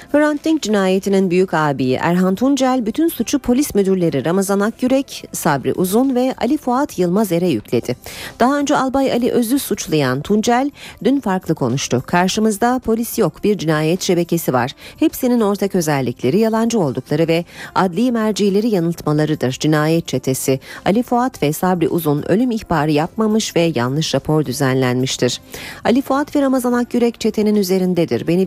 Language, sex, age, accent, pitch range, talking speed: Turkish, female, 40-59, native, 150-225 Hz, 140 wpm